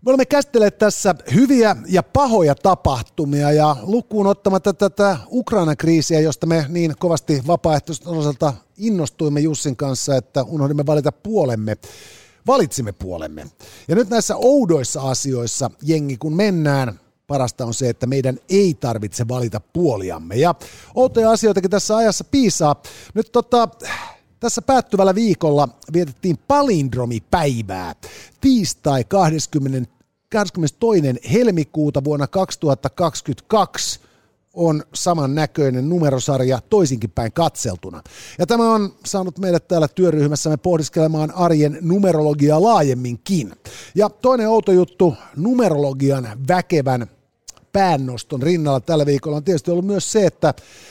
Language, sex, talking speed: Finnish, male, 110 wpm